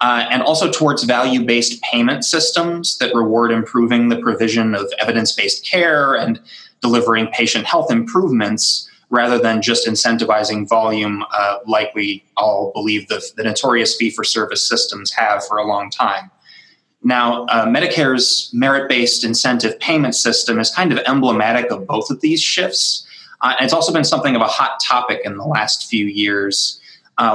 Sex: male